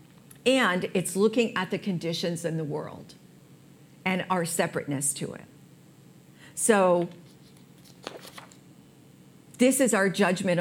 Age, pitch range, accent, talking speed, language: 50-69, 170-215 Hz, American, 105 wpm, English